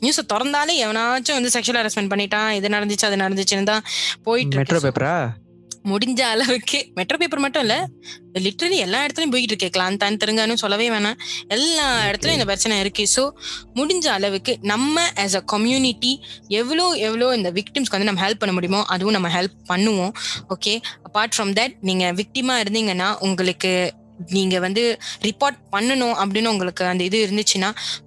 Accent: native